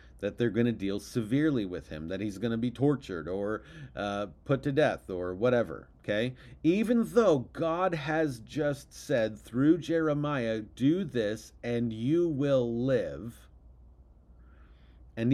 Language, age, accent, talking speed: English, 40-59, American, 145 wpm